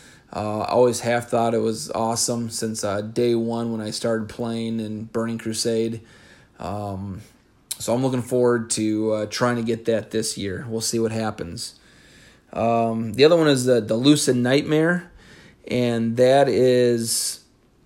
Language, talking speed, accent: English, 160 wpm, American